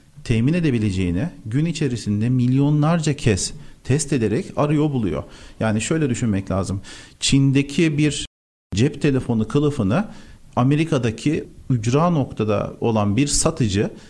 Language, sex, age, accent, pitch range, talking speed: Turkish, male, 40-59, native, 110-150 Hz, 105 wpm